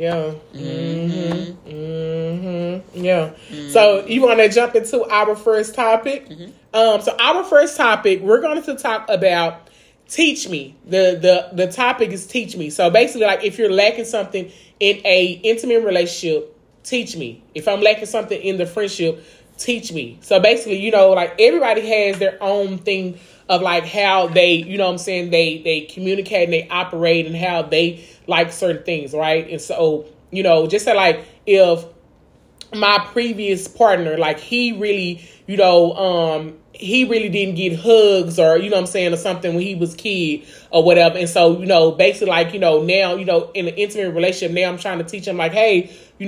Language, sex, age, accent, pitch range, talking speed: English, male, 30-49, American, 170-215 Hz, 190 wpm